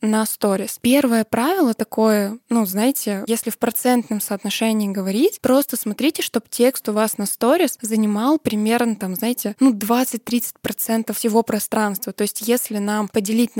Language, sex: Russian, female